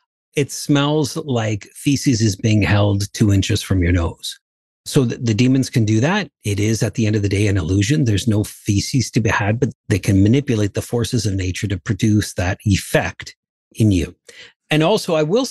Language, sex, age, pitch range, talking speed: English, male, 50-69, 105-135 Hz, 205 wpm